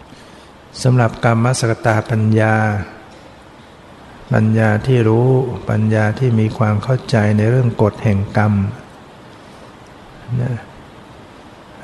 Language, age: Thai, 60-79